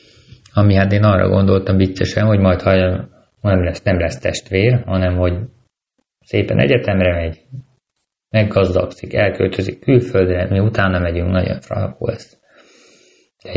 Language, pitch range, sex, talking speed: Hungarian, 90-105 Hz, male, 135 wpm